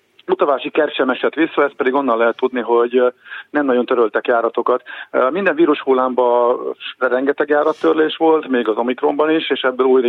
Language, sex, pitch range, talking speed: Hungarian, male, 115-140 Hz, 160 wpm